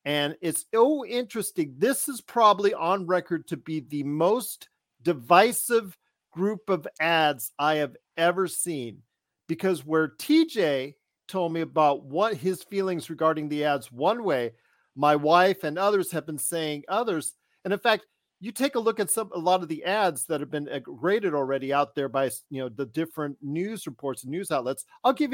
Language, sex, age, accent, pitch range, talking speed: English, male, 40-59, American, 145-200 Hz, 180 wpm